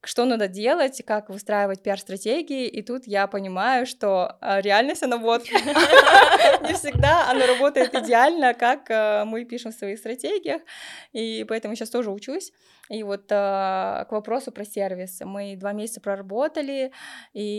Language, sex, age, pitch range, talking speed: Russian, female, 20-39, 195-235 Hz, 140 wpm